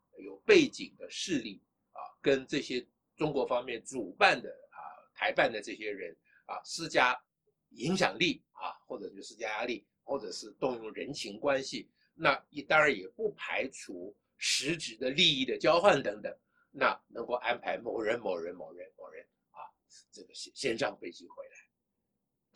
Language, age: Chinese, 50-69